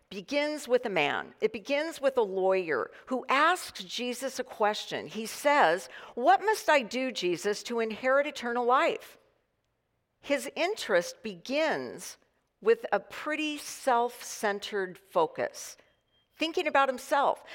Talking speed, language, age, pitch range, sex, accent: 125 wpm, English, 50-69, 225-310 Hz, female, American